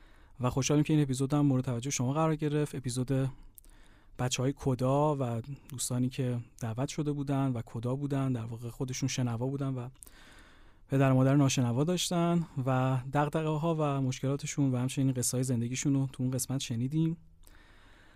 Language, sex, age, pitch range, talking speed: Persian, male, 30-49, 120-145 Hz, 160 wpm